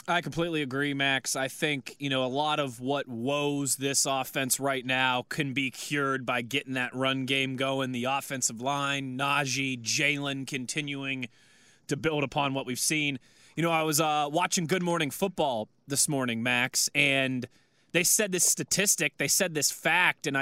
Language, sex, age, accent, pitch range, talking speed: English, male, 20-39, American, 135-175 Hz, 175 wpm